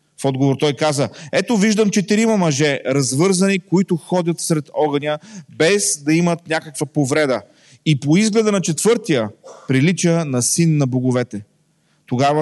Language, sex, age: Bulgarian, male, 30-49